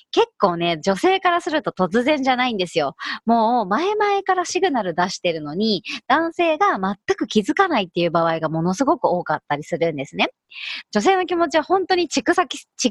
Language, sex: Japanese, male